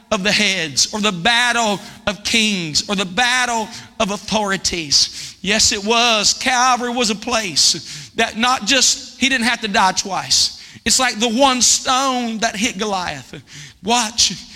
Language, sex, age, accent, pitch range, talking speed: English, male, 50-69, American, 195-245 Hz, 155 wpm